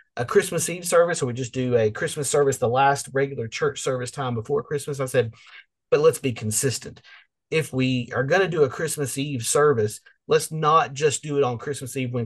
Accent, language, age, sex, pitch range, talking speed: American, English, 30-49, male, 120-160 Hz, 210 wpm